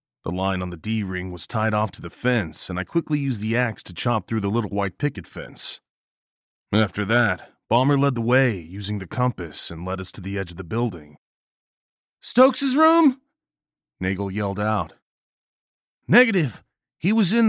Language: English